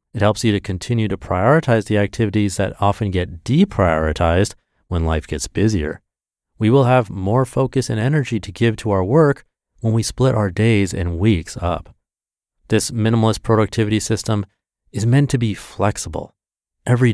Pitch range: 90-115 Hz